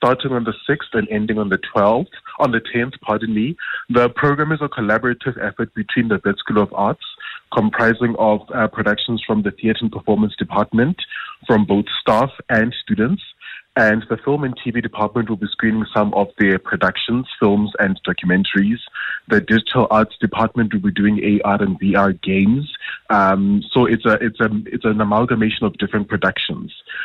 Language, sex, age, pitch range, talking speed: English, male, 20-39, 100-120 Hz, 180 wpm